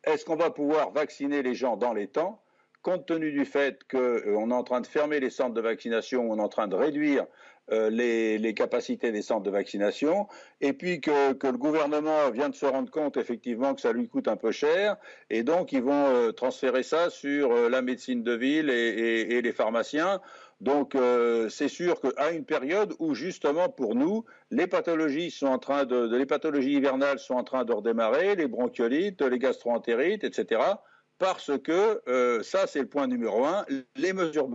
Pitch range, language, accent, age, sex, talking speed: 125-185 Hz, French, French, 50-69, male, 200 wpm